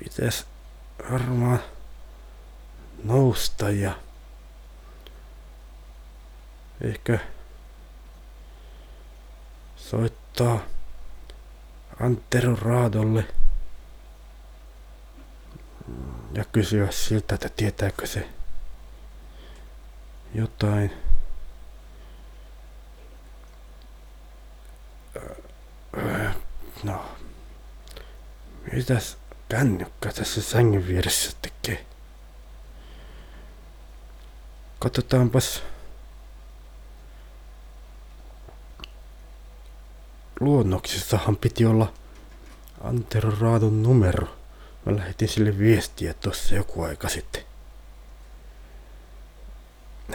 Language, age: Finnish, 60-79